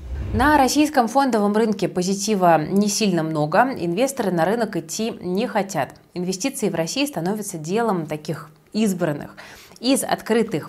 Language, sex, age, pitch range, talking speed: Russian, female, 20-39, 165-220 Hz, 130 wpm